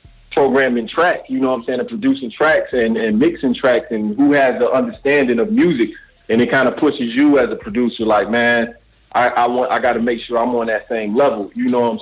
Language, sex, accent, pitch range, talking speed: English, male, American, 115-130 Hz, 245 wpm